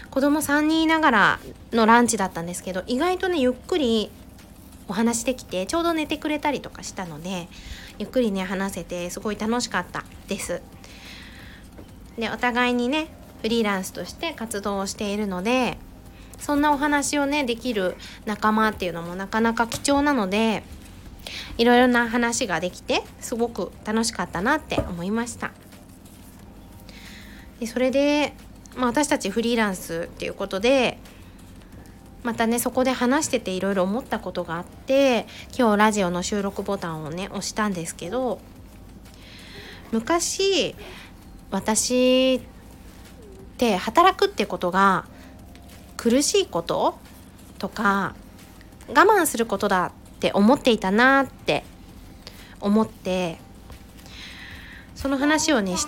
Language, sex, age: Japanese, female, 20-39